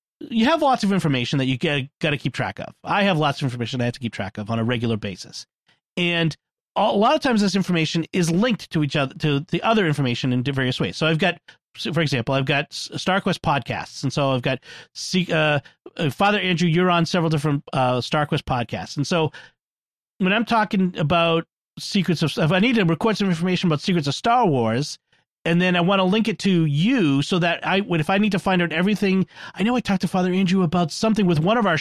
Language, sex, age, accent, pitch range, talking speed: English, male, 40-59, American, 140-185 Hz, 230 wpm